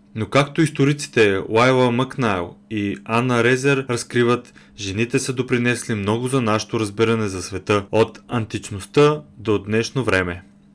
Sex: male